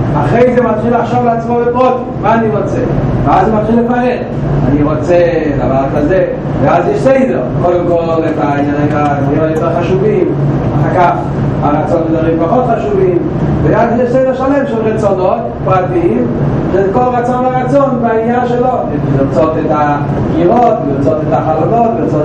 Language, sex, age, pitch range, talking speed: Hebrew, male, 40-59, 150-220 Hz, 150 wpm